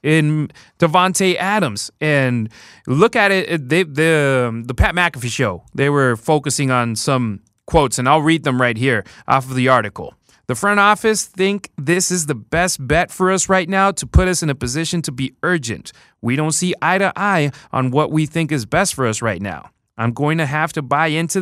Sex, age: male, 30-49